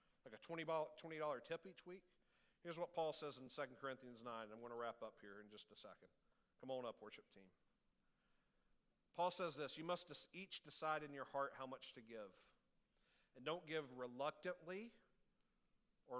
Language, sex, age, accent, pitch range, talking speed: English, male, 50-69, American, 130-185 Hz, 180 wpm